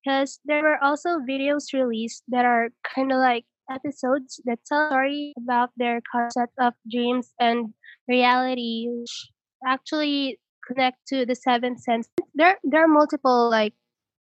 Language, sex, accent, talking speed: English, female, Filipino, 140 wpm